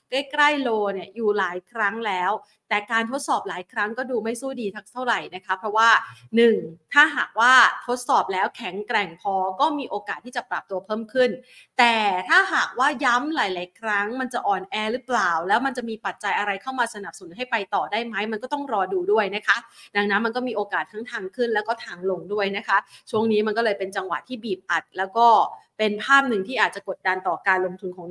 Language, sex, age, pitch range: Thai, female, 30-49, 195-245 Hz